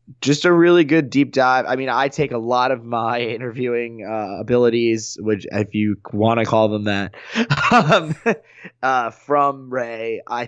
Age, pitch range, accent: 20-39, 110-125 Hz, American